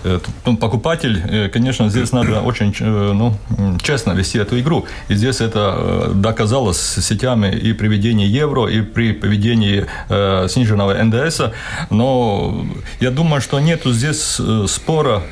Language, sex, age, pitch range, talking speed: Russian, male, 30-49, 105-135 Hz, 120 wpm